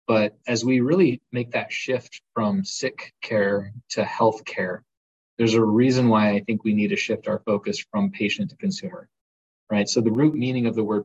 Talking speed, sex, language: 200 wpm, male, English